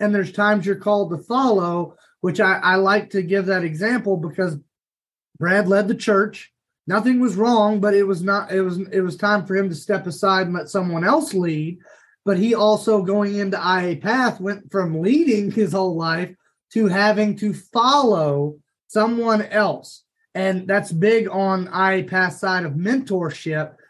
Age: 30-49